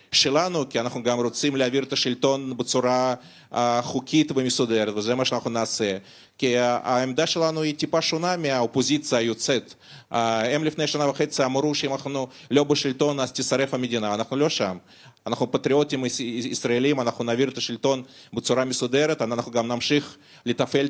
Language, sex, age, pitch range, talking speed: Hebrew, male, 30-49, 125-150 Hz, 155 wpm